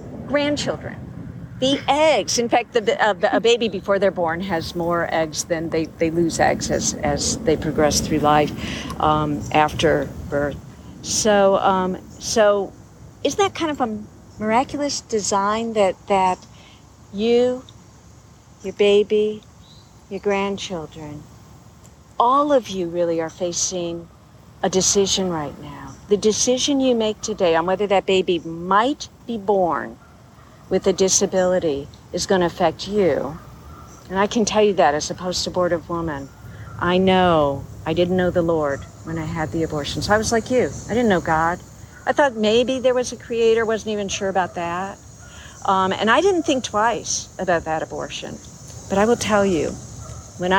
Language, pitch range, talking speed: English, 150-205 Hz, 160 wpm